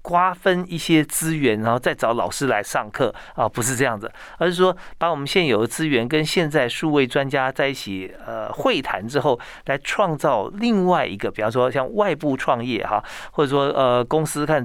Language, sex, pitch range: Chinese, male, 115-150 Hz